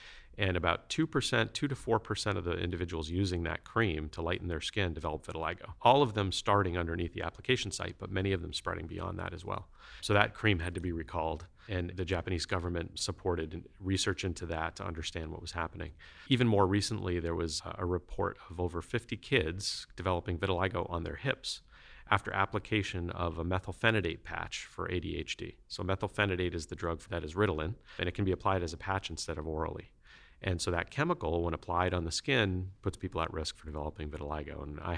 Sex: male